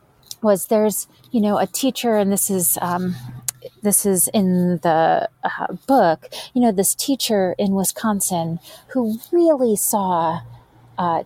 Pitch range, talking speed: 175-225 Hz, 140 wpm